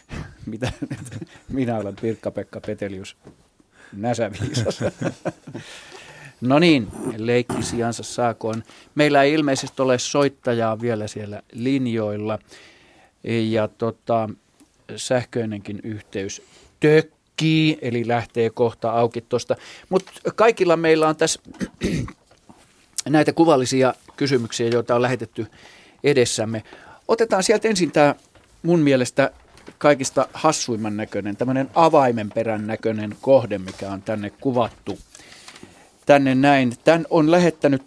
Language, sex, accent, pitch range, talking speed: Finnish, male, native, 110-140 Hz, 100 wpm